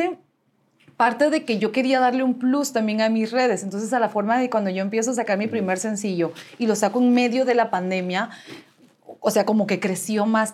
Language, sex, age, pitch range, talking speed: English, female, 30-49, 180-220 Hz, 220 wpm